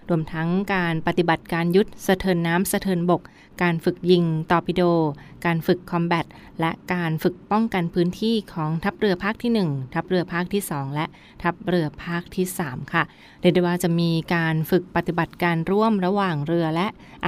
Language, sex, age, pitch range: Thai, female, 20-39, 165-190 Hz